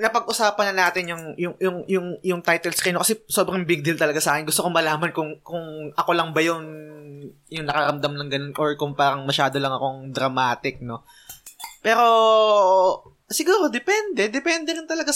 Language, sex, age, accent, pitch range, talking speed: Filipino, male, 20-39, native, 145-185 Hz, 180 wpm